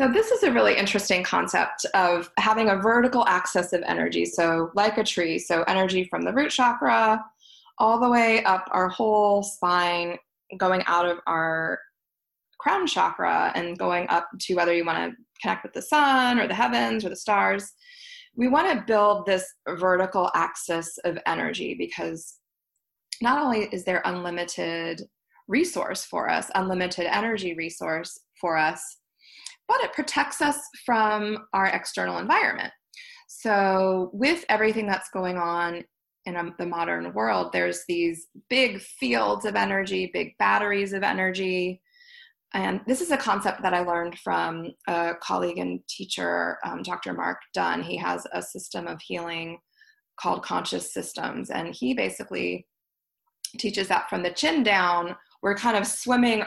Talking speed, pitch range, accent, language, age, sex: 155 wpm, 170-230 Hz, American, English, 20-39, female